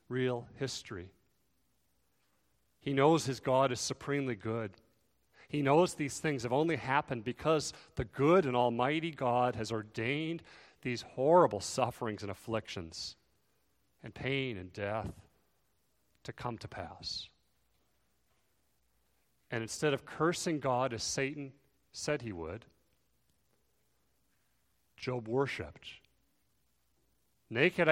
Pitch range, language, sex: 100-135 Hz, English, male